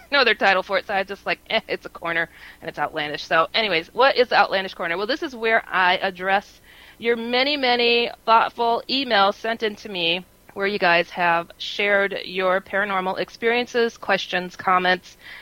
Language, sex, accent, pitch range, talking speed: English, female, American, 170-220 Hz, 185 wpm